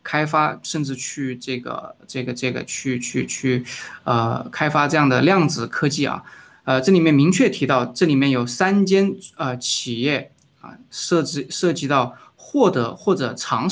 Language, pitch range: Chinese, 125-160 Hz